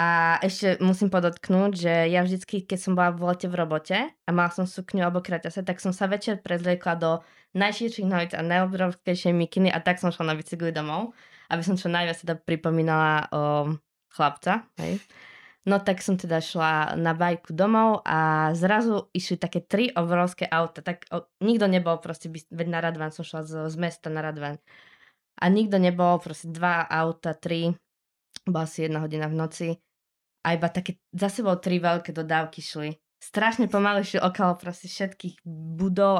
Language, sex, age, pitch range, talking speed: Slovak, female, 20-39, 160-185 Hz, 170 wpm